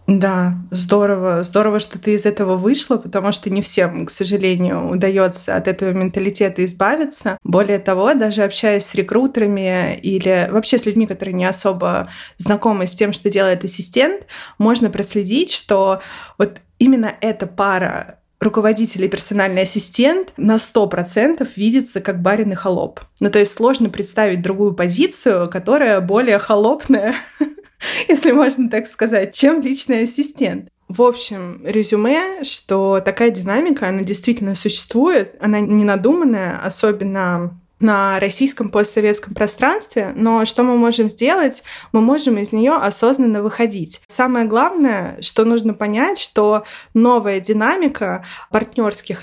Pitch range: 200-245 Hz